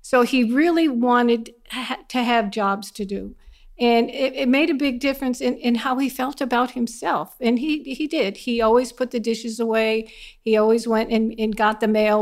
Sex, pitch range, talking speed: female, 215-255 Hz, 200 wpm